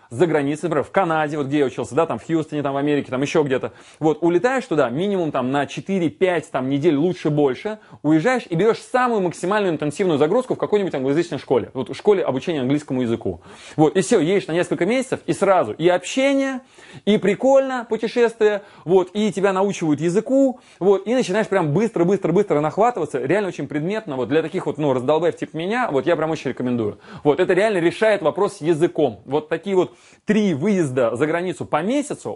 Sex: male